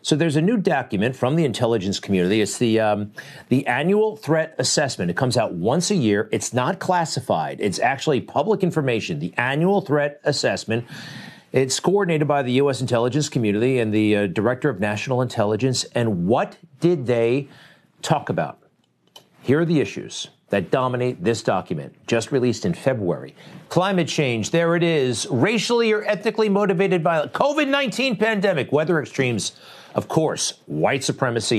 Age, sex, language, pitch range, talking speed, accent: 50-69, male, English, 120-170 Hz, 160 wpm, American